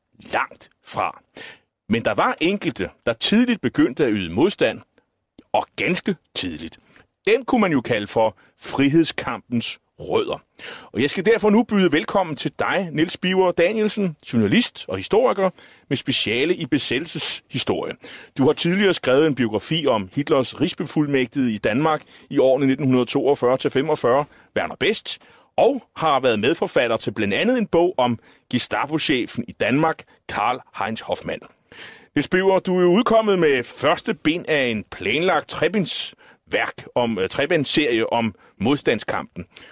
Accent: native